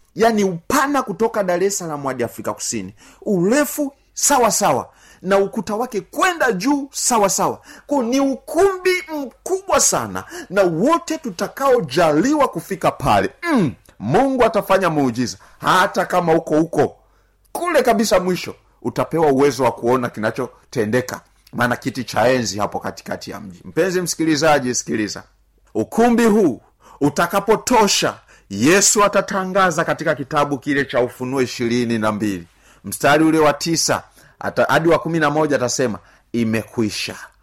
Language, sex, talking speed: Swahili, male, 130 wpm